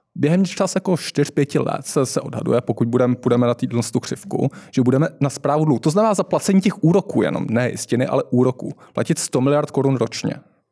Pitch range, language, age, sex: 115-150 Hz, Czech, 20-39, male